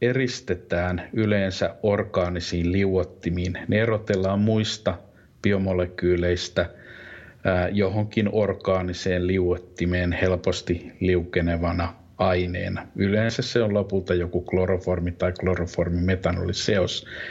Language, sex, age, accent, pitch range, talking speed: Finnish, male, 50-69, native, 90-105 Hz, 75 wpm